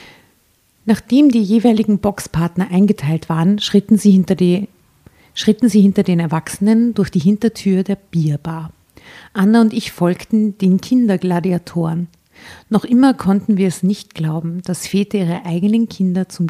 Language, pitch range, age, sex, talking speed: German, 175-215 Hz, 50-69, female, 140 wpm